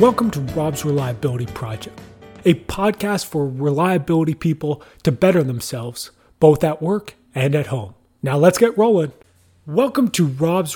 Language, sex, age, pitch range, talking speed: English, male, 30-49, 140-175 Hz, 145 wpm